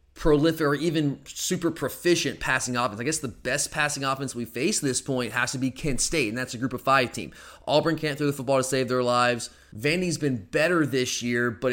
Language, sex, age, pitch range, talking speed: English, male, 30-49, 125-145 Hz, 230 wpm